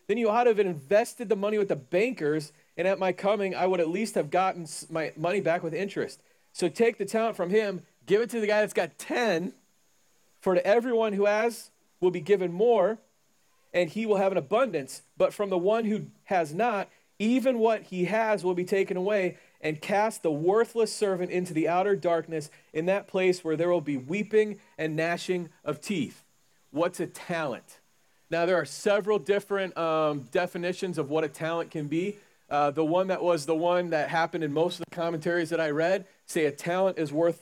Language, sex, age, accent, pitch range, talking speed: English, male, 40-59, American, 160-200 Hz, 205 wpm